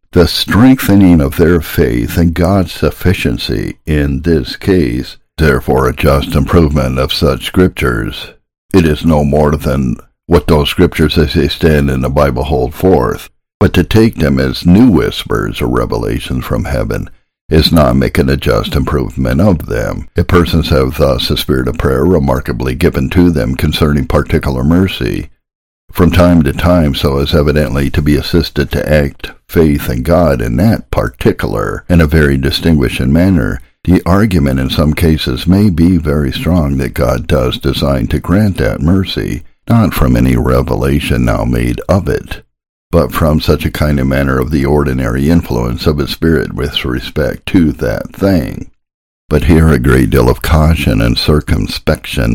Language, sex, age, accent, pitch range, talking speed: English, male, 60-79, American, 65-85 Hz, 165 wpm